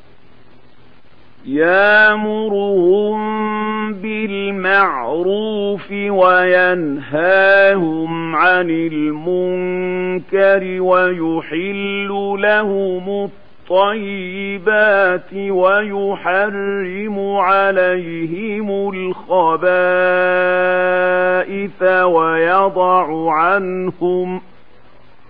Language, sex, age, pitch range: Arabic, male, 50-69, 180-200 Hz